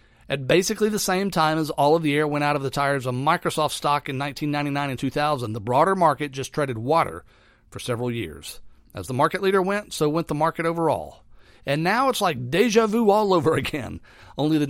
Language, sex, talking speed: English, male, 210 wpm